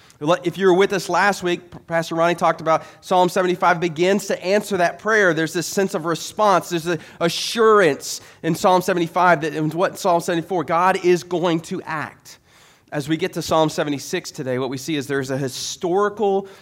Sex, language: male, English